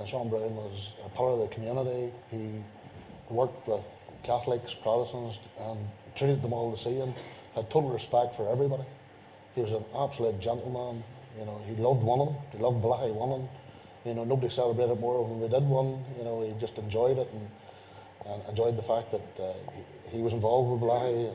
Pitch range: 105-125 Hz